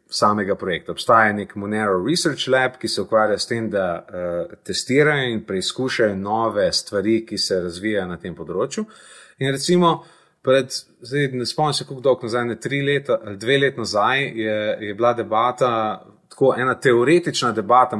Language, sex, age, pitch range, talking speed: English, male, 30-49, 120-170 Hz, 160 wpm